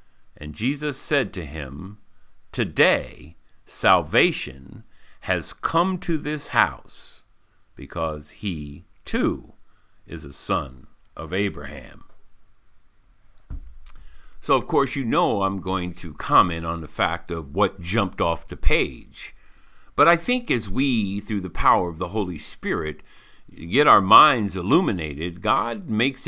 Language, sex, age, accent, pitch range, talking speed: English, male, 50-69, American, 85-115 Hz, 130 wpm